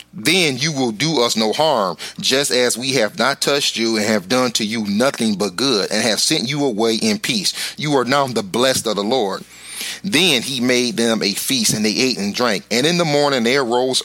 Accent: American